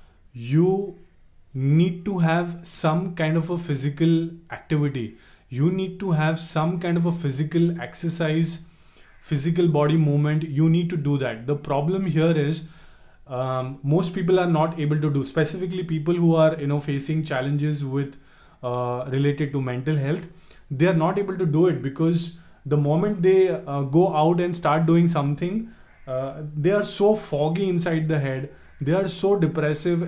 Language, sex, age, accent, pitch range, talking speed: English, male, 20-39, Indian, 140-175 Hz, 170 wpm